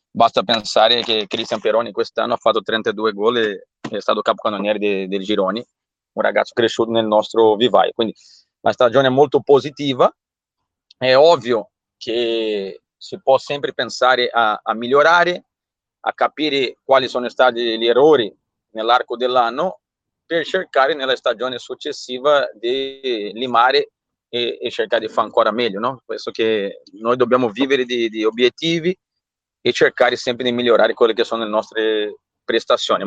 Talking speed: 150 wpm